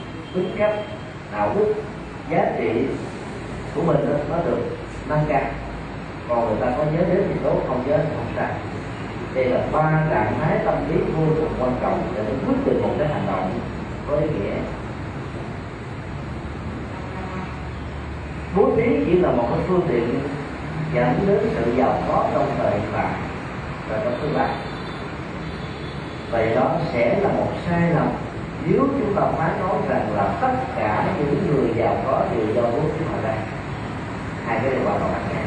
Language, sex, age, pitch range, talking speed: Vietnamese, male, 40-59, 120-175 Hz, 165 wpm